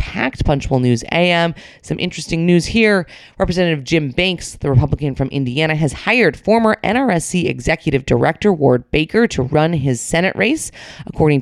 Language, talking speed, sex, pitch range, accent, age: English, 150 wpm, female, 145-200 Hz, American, 30-49